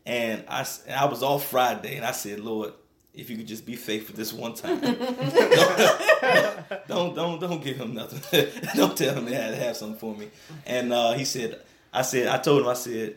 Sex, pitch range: male, 110-135 Hz